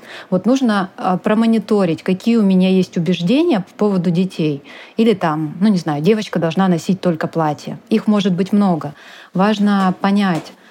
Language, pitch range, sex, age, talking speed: Russian, 170-200 Hz, female, 20-39, 150 wpm